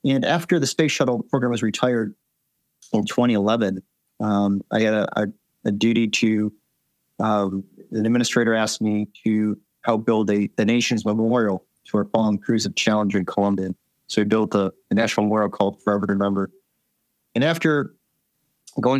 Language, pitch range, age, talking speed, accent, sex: English, 105-130 Hz, 30-49, 165 wpm, American, male